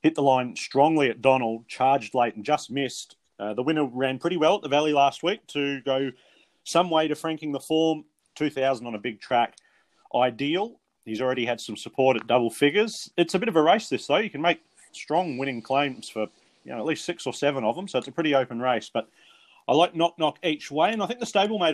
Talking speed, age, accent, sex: 235 wpm, 30-49, Australian, male